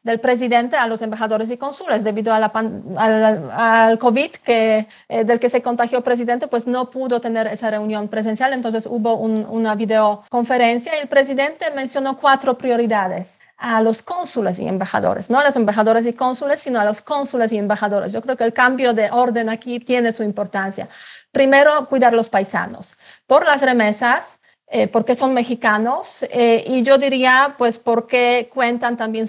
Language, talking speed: Spanish, 180 wpm